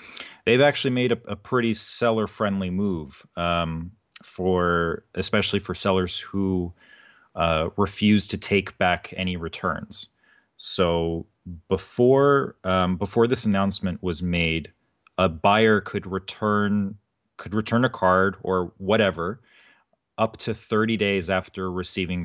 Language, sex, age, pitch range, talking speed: English, male, 30-49, 90-105 Hz, 120 wpm